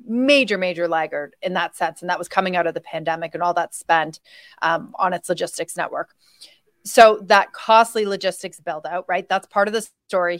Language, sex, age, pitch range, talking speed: English, female, 30-49, 180-215 Hz, 200 wpm